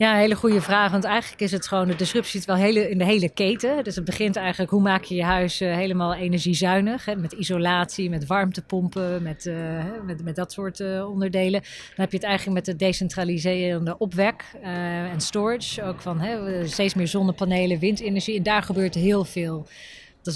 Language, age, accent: Dutch, 20-39, Dutch